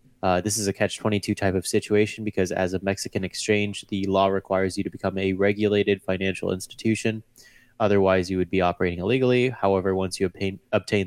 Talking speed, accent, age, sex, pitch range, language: 185 wpm, American, 20-39, male, 95-115 Hz, English